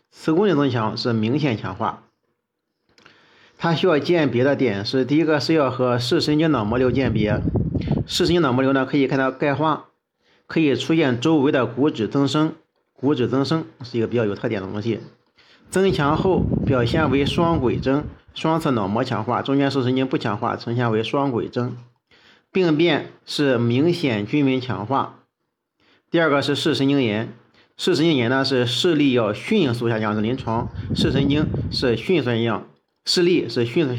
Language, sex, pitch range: Chinese, male, 115-150 Hz